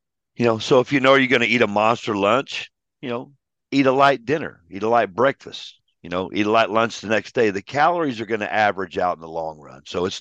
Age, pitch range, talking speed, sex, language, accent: 50-69, 95-120 Hz, 265 wpm, male, English, American